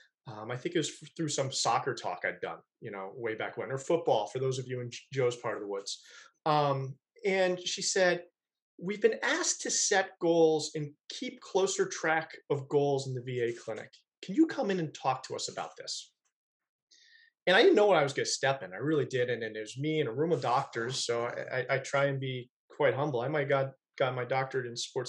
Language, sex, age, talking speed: English, male, 30-49, 235 wpm